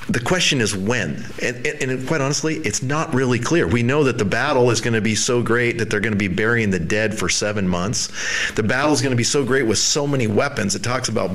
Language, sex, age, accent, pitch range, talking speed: English, male, 40-59, American, 105-140 Hz, 260 wpm